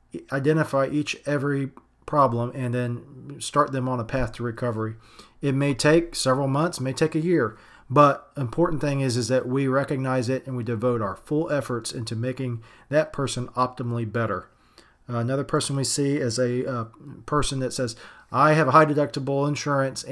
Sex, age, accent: male, 40-59, American